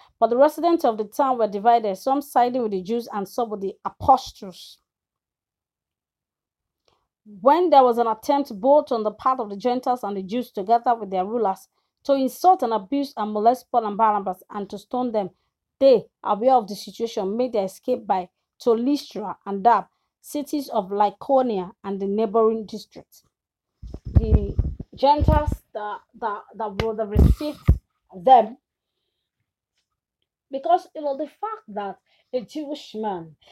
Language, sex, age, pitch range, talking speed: English, female, 30-49, 210-280 Hz, 155 wpm